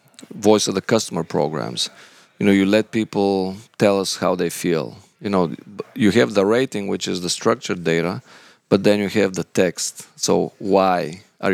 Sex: male